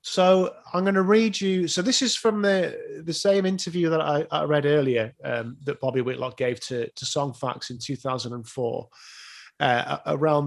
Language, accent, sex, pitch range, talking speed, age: English, British, male, 130-185 Hz, 185 wpm, 30-49